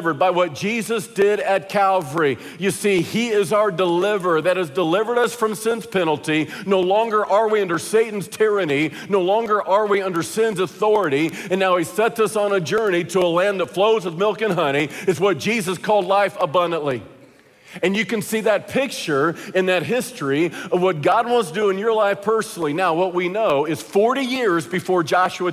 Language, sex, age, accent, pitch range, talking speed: English, male, 50-69, American, 170-210 Hz, 195 wpm